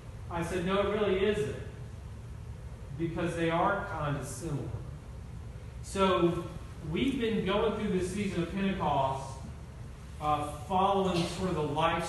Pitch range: 140-175 Hz